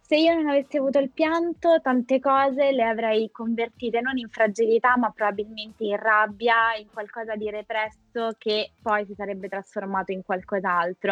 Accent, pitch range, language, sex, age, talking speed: native, 200-245 Hz, Italian, female, 20-39, 160 wpm